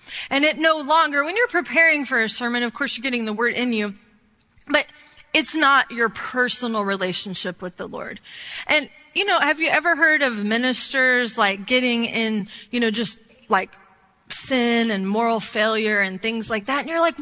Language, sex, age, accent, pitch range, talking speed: English, female, 30-49, American, 215-285 Hz, 190 wpm